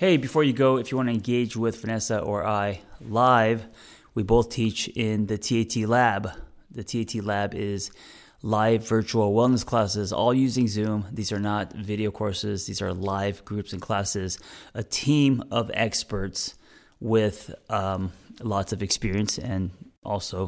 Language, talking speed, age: English, 160 wpm, 30-49